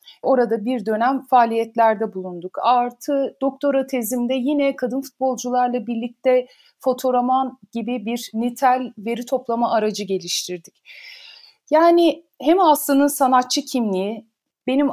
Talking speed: 105 wpm